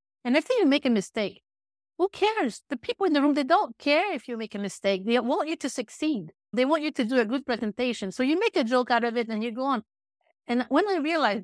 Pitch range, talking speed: 200-255 Hz, 260 wpm